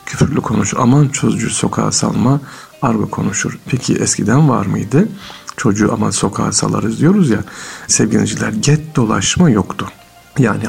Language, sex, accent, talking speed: Turkish, male, native, 130 wpm